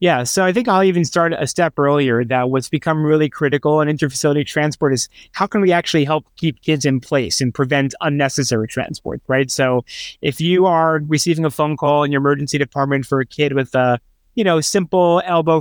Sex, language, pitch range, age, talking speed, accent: male, English, 135-175 Hz, 30-49, 210 wpm, American